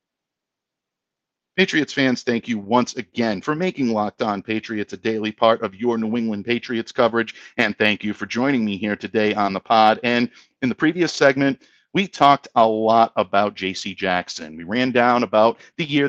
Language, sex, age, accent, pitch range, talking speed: English, male, 50-69, American, 105-140 Hz, 185 wpm